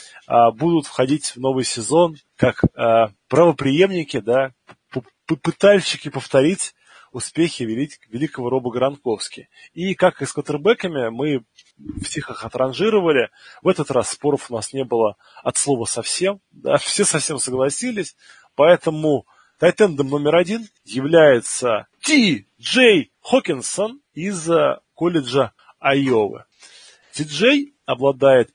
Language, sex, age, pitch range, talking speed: Russian, male, 20-39, 120-170 Hz, 110 wpm